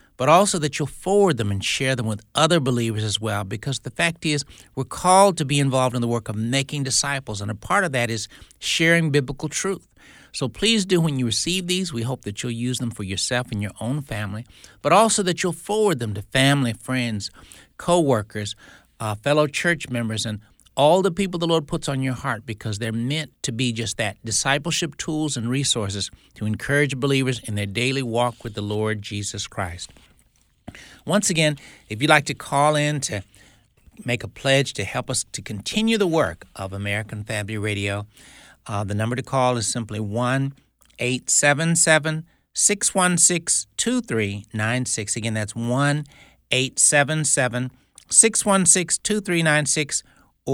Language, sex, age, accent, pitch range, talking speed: English, male, 60-79, American, 110-155 Hz, 165 wpm